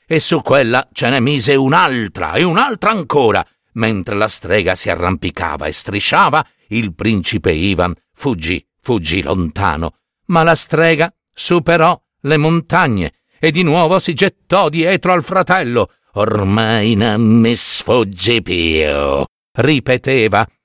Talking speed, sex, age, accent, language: 125 wpm, male, 50-69, native, Italian